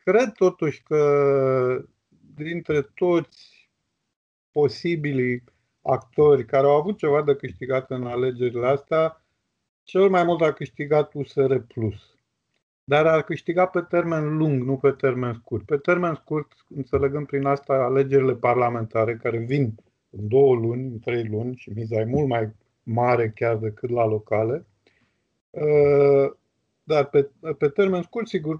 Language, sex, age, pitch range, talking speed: Romanian, male, 50-69, 125-165 Hz, 135 wpm